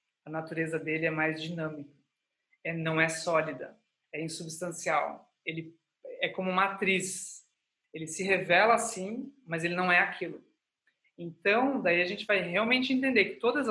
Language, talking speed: Portuguese, 150 wpm